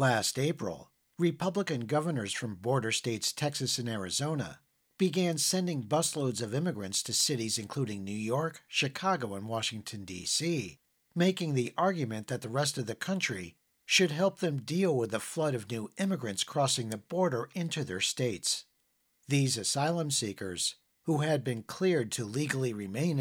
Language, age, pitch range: English, 50-69, 115-160 Hz